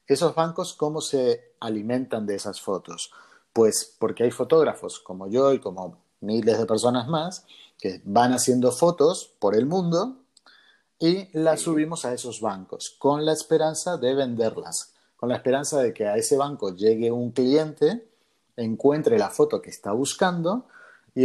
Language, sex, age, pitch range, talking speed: Spanish, male, 30-49, 115-160 Hz, 160 wpm